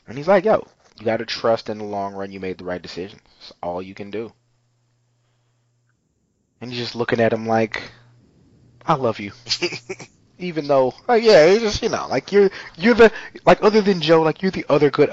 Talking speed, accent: 205 wpm, American